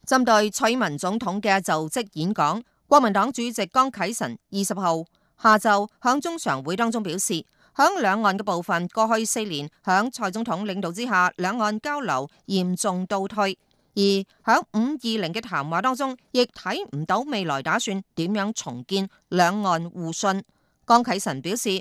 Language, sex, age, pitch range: Chinese, female, 30-49, 190-245 Hz